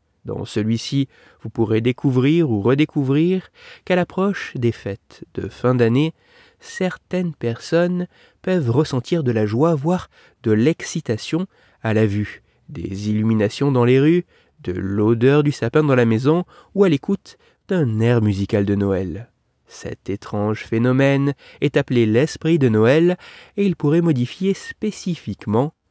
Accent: French